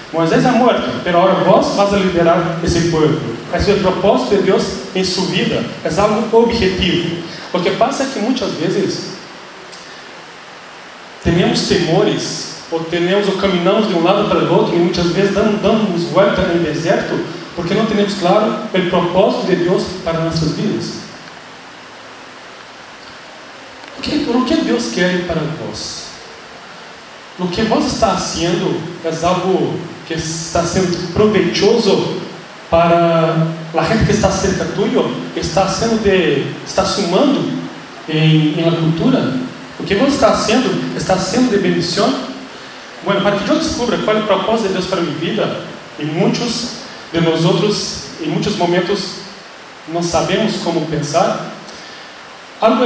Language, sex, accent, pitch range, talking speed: English, male, Brazilian, 170-210 Hz, 145 wpm